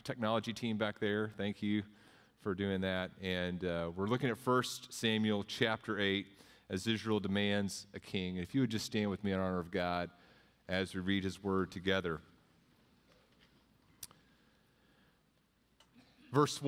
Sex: male